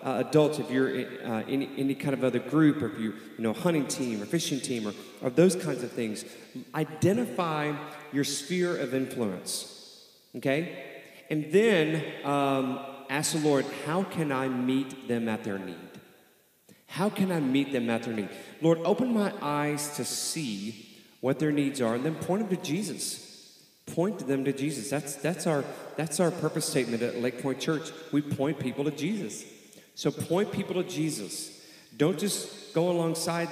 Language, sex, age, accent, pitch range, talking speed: English, male, 40-59, American, 120-160 Hz, 180 wpm